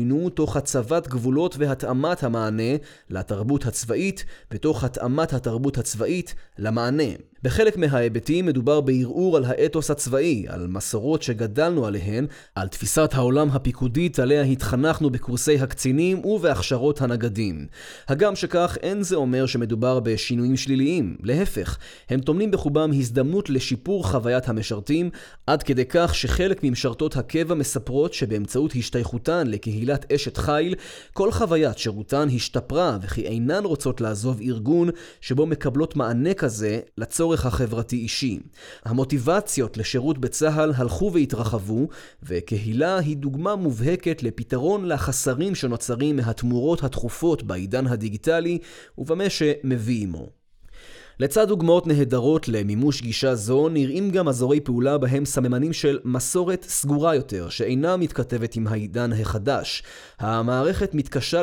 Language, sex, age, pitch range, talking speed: Hebrew, male, 20-39, 120-155 Hz, 115 wpm